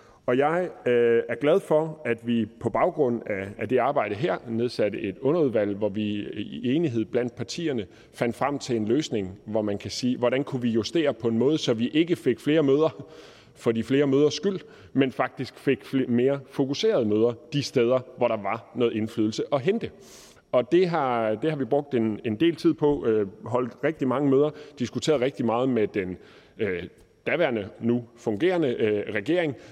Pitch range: 110-140 Hz